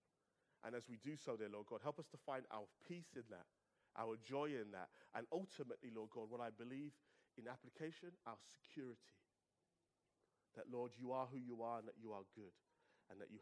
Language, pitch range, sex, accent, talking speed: English, 110-150 Hz, male, British, 205 wpm